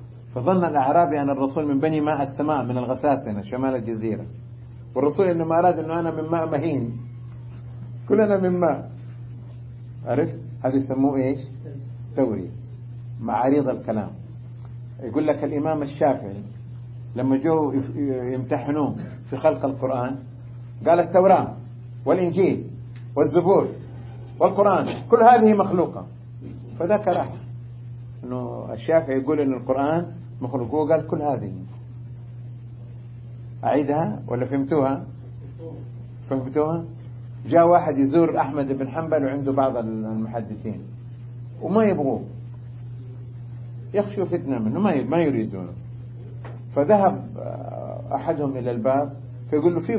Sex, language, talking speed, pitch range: male, Arabic, 105 wpm, 120-150 Hz